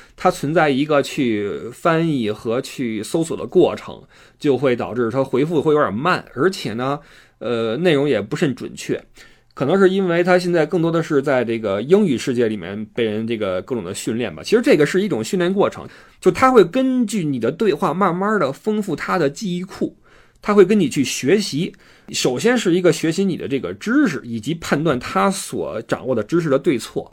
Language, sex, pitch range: Chinese, male, 125-190 Hz